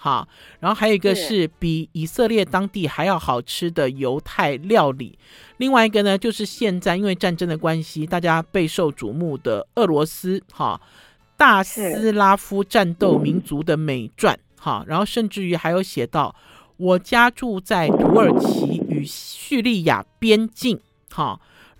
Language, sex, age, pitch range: Chinese, male, 50-69, 175-245 Hz